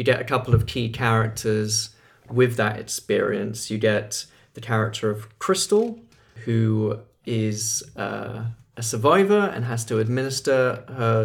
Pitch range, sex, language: 110-125 Hz, male, English